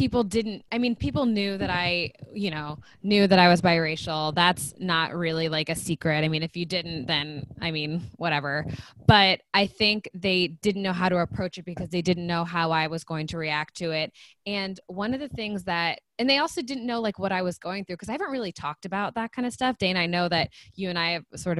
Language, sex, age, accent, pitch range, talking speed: English, female, 20-39, American, 155-200 Hz, 245 wpm